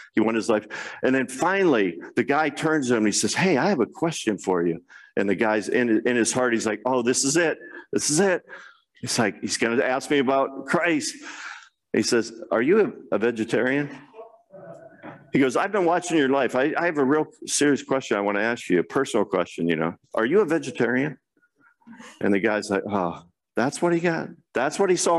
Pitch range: 115-155 Hz